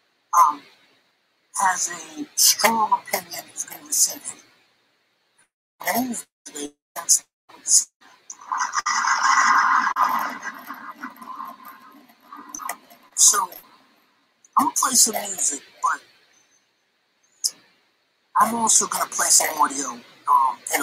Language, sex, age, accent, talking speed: English, male, 50-69, American, 80 wpm